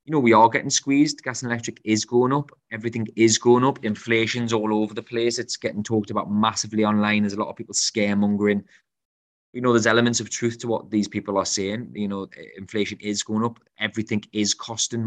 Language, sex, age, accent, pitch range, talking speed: English, male, 20-39, British, 95-110 Hz, 215 wpm